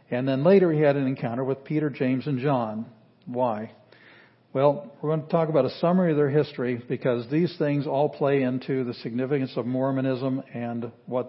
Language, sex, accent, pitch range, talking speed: English, male, American, 125-155 Hz, 190 wpm